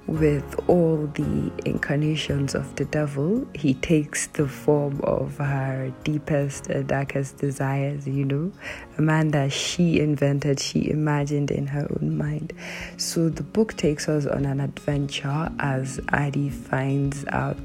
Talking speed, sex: 140 wpm, female